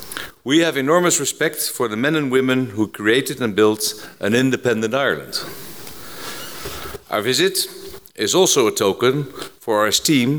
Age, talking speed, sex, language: 50-69, 145 wpm, male, English